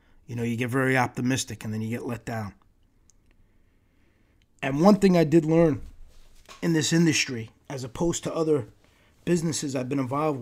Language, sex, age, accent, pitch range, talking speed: English, male, 30-49, American, 105-155 Hz, 165 wpm